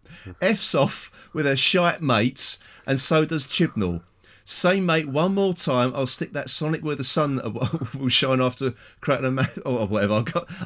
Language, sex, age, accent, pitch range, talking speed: English, male, 40-59, British, 100-150 Hz, 180 wpm